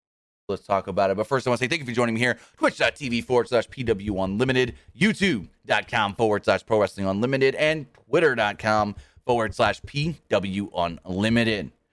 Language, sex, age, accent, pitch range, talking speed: English, male, 30-49, American, 100-130 Hz, 155 wpm